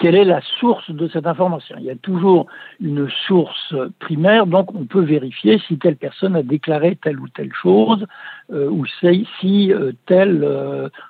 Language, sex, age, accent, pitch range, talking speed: French, male, 60-79, French, 155-205 Hz, 185 wpm